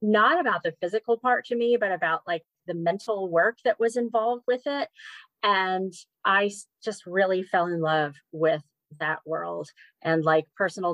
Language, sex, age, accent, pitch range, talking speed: English, female, 30-49, American, 160-195 Hz, 170 wpm